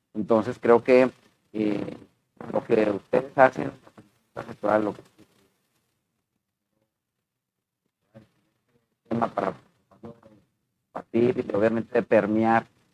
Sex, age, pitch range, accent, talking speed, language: male, 40-59, 100-125 Hz, Mexican, 80 wpm, Spanish